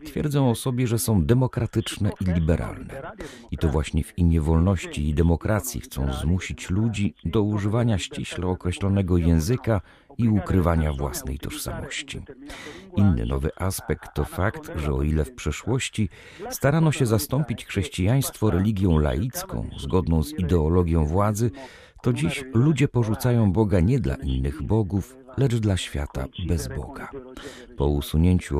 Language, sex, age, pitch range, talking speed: Polish, male, 50-69, 80-115 Hz, 135 wpm